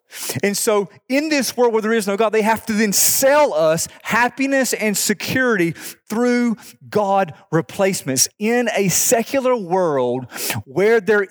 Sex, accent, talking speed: male, American, 150 wpm